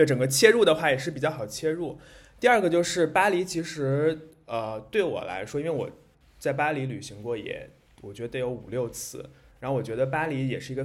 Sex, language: male, Chinese